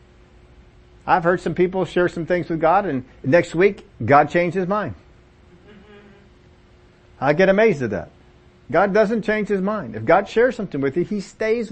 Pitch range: 120-170 Hz